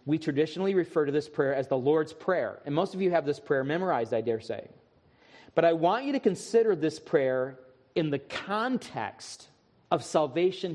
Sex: male